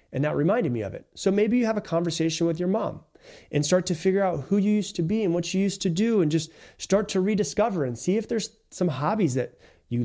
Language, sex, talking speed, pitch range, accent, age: English, male, 265 wpm, 140-190 Hz, American, 30-49